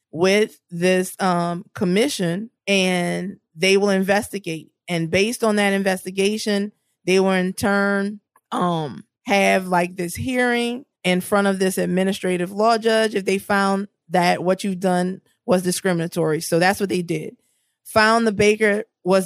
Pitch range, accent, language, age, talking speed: 175-205 Hz, American, English, 20-39, 145 wpm